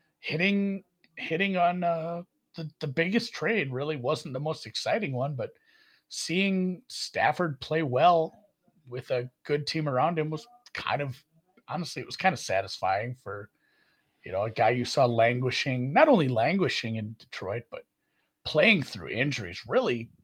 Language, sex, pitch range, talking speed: English, male, 120-165 Hz, 155 wpm